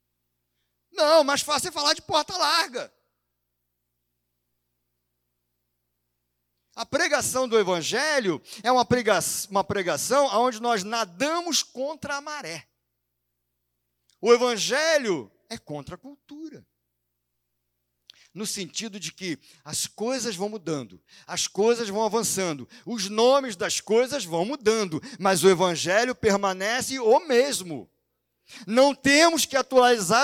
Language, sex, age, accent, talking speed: Portuguese, male, 50-69, Brazilian, 115 wpm